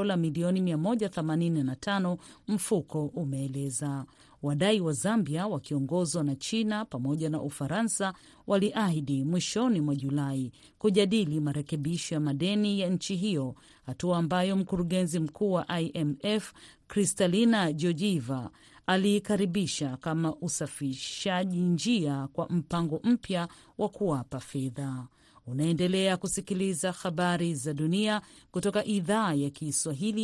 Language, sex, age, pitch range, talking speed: Swahili, female, 40-59, 145-200 Hz, 100 wpm